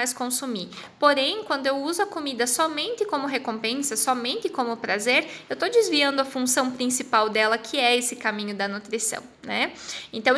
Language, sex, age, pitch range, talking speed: Portuguese, female, 10-29, 235-300 Hz, 170 wpm